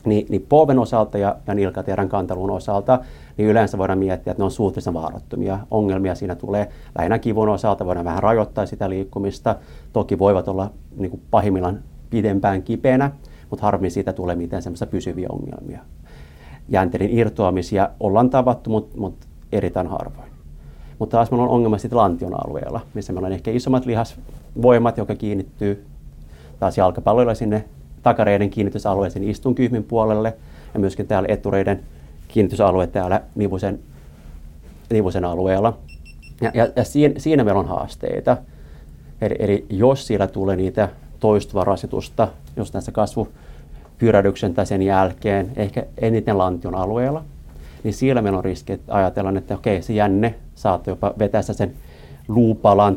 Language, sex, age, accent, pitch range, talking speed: Finnish, male, 30-49, native, 90-110 Hz, 140 wpm